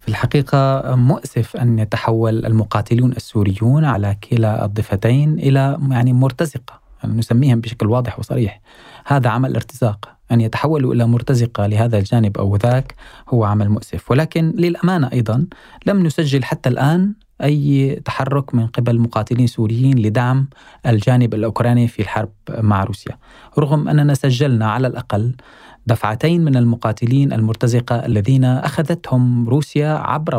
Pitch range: 115-140 Hz